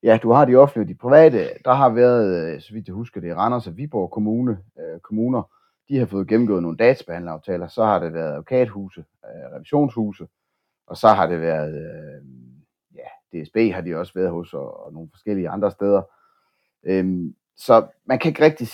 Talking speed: 190 wpm